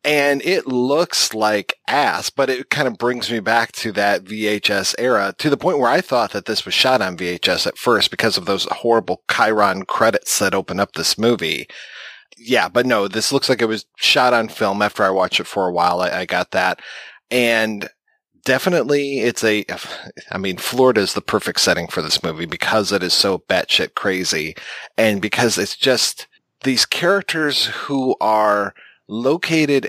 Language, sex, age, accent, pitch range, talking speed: English, male, 30-49, American, 105-135 Hz, 185 wpm